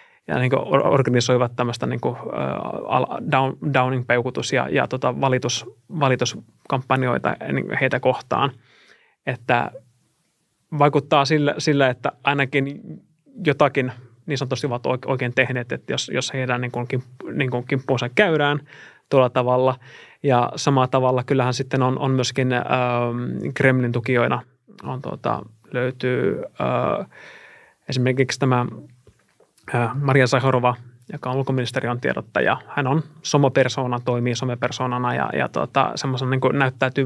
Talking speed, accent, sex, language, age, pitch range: 115 wpm, native, male, Finnish, 20-39, 125-140 Hz